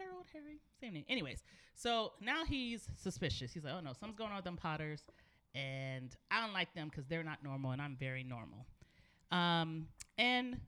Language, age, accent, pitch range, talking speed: English, 30-49, American, 130-175 Hz, 190 wpm